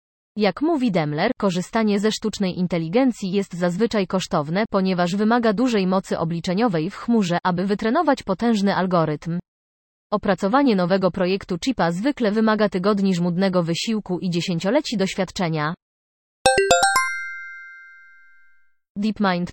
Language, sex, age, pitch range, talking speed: Polish, female, 30-49, 175-220 Hz, 105 wpm